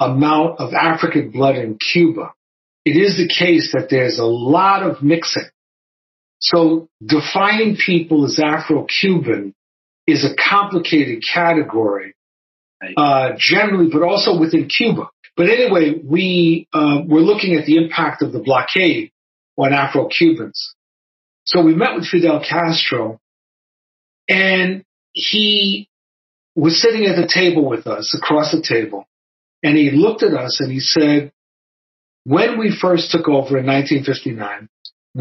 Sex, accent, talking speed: male, American, 135 wpm